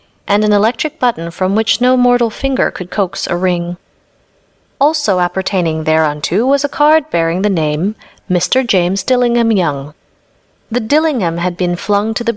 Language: Korean